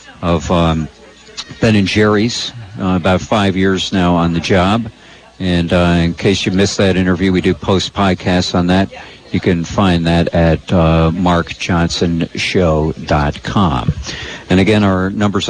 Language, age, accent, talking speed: English, 50-69, American, 145 wpm